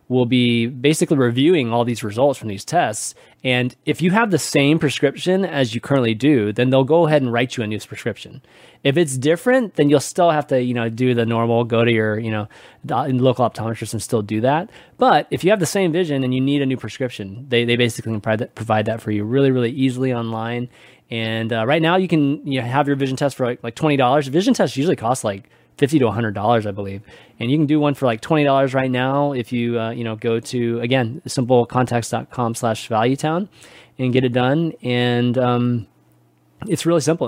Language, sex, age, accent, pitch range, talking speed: English, male, 20-39, American, 115-150 Hz, 220 wpm